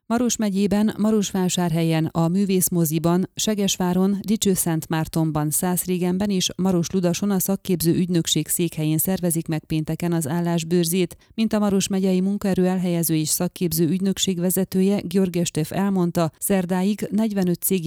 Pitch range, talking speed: 165-195 Hz, 120 wpm